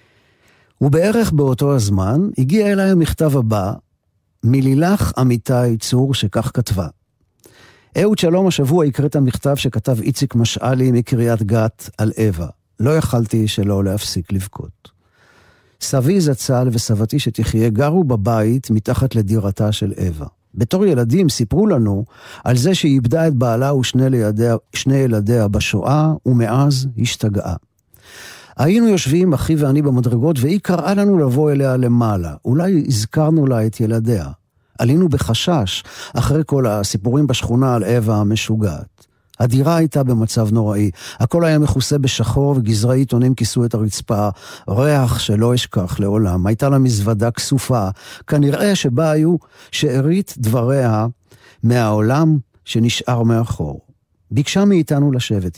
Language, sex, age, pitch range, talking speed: Hebrew, male, 50-69, 110-140 Hz, 120 wpm